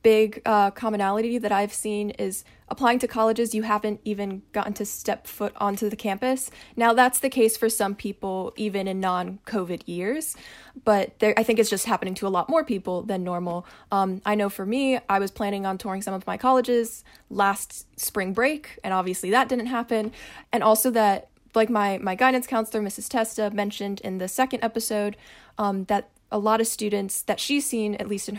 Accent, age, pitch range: American, 20-39, 195-225 Hz